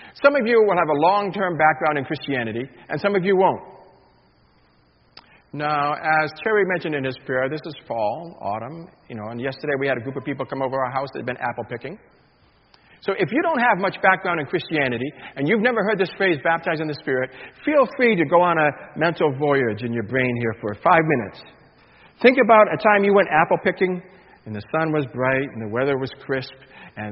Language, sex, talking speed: English, male, 220 wpm